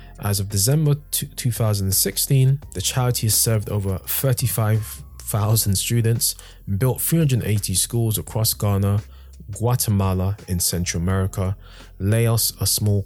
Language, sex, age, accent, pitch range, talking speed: English, male, 20-39, British, 90-110 Hz, 105 wpm